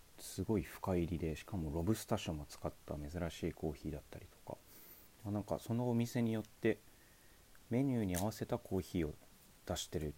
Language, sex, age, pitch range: Japanese, male, 40-59, 80-110 Hz